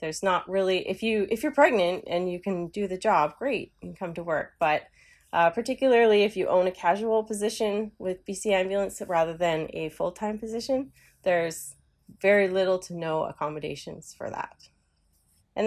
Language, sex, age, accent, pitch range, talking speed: English, female, 30-49, American, 175-220 Hz, 175 wpm